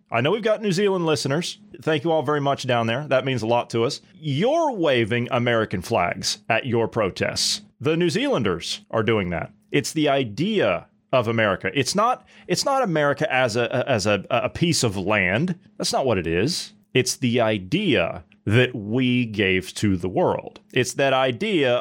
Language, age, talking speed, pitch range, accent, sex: English, 30-49, 185 wpm, 120-175 Hz, American, male